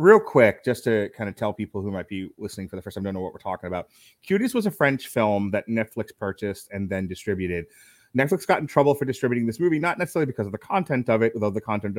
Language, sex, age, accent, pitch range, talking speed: English, male, 30-49, American, 105-135 Hz, 260 wpm